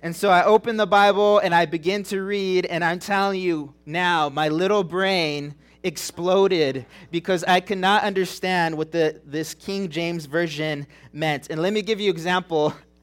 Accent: American